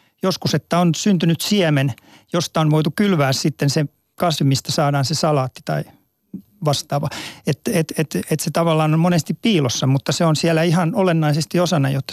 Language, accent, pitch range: Finnish, native, 140-165 Hz